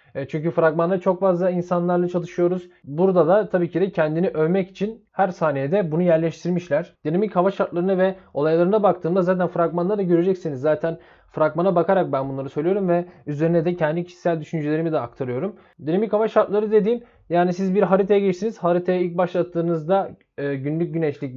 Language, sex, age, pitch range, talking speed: Turkish, male, 20-39, 155-185 Hz, 155 wpm